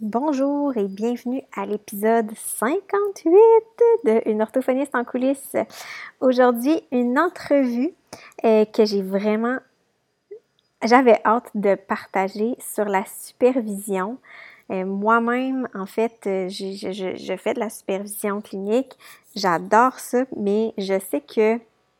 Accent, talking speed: Canadian, 110 wpm